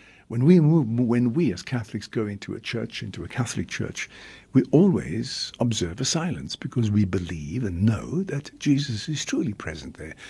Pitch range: 100-130 Hz